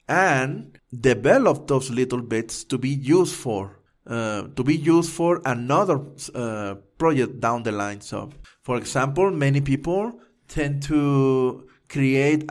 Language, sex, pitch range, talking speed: English, male, 125-150 Hz, 135 wpm